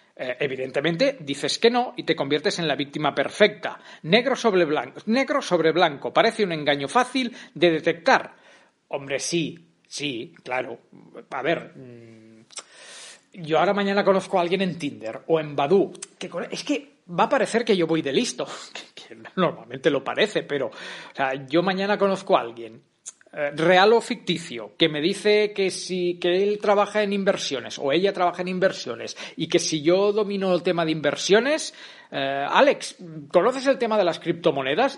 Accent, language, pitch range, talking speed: Spanish, Spanish, 145-200 Hz, 170 wpm